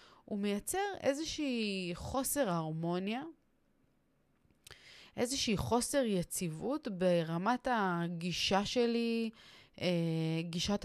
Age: 20-39